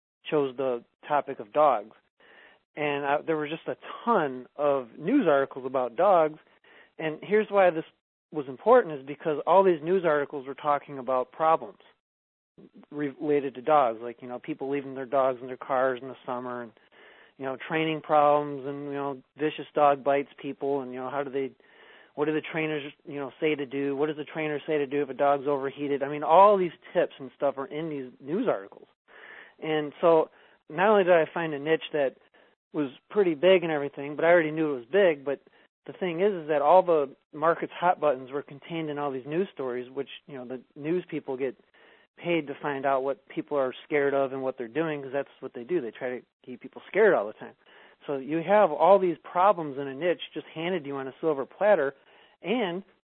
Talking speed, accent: 215 wpm, American